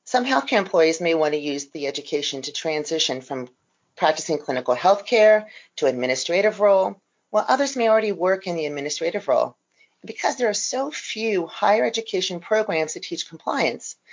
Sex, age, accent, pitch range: female, 40-59, American, 155-215 Hz